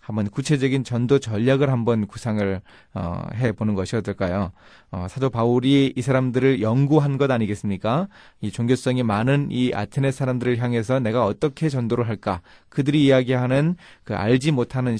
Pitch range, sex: 110-140 Hz, male